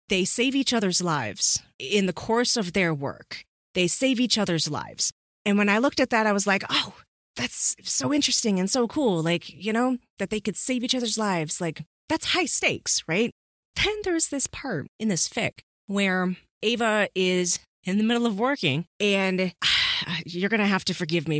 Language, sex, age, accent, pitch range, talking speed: English, female, 30-49, American, 160-215 Hz, 200 wpm